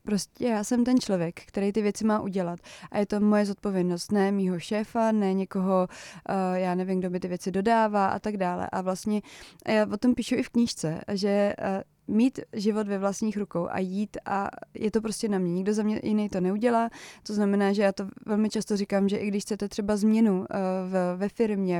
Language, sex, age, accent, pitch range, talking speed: Czech, female, 20-39, native, 190-215 Hz, 210 wpm